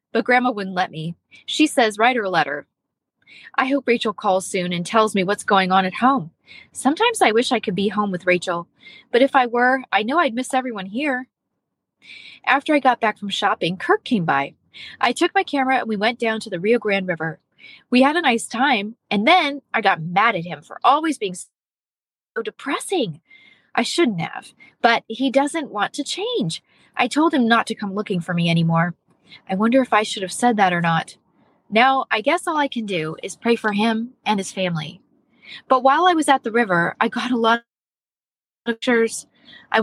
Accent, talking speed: American, 210 wpm